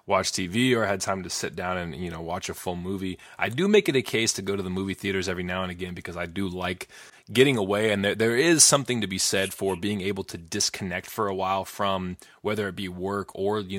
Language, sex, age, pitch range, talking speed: English, male, 20-39, 95-110 Hz, 265 wpm